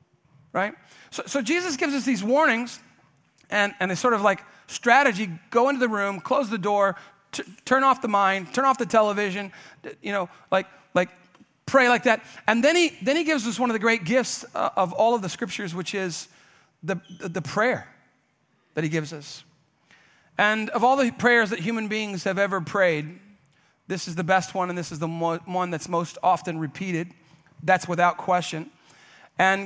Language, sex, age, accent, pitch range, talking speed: English, male, 40-59, American, 160-210 Hz, 190 wpm